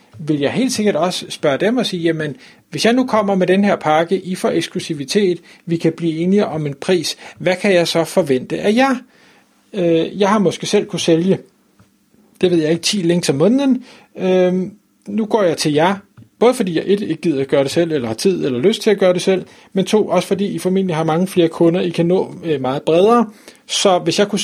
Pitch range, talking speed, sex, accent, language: 150-195 Hz, 235 wpm, male, native, Danish